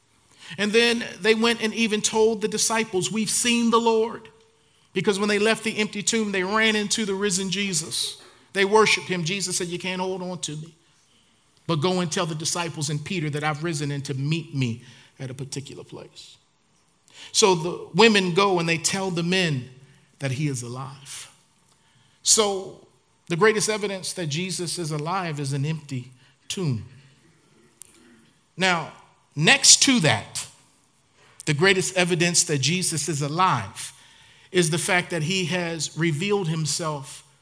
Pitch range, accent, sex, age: 145-195 Hz, American, male, 40-59